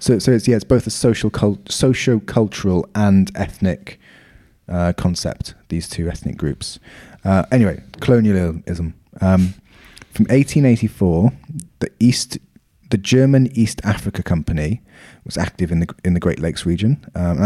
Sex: male